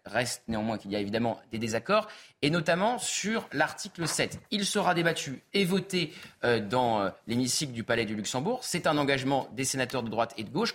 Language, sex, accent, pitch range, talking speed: French, male, French, 130-185 Hz, 200 wpm